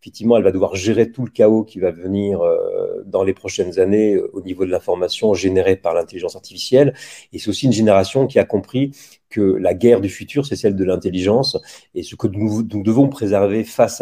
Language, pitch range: French, 95-120 Hz